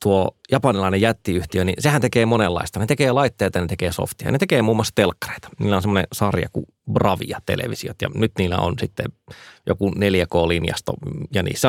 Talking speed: 170 wpm